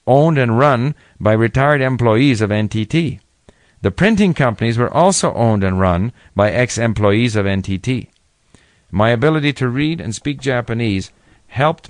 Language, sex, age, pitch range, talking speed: English, male, 50-69, 100-135 Hz, 140 wpm